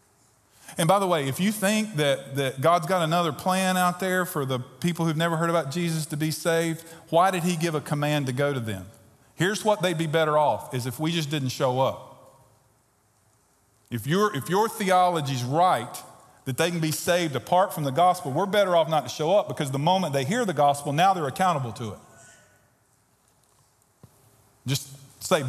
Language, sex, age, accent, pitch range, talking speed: English, male, 40-59, American, 140-190 Hz, 200 wpm